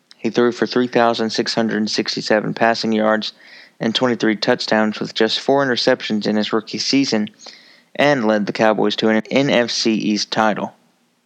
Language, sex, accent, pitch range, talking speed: English, male, American, 115-130 Hz, 140 wpm